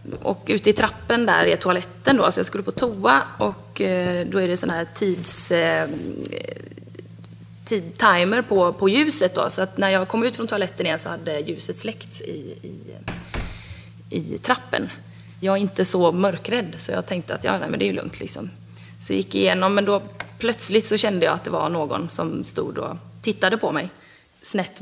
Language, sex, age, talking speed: Swedish, female, 30-49, 190 wpm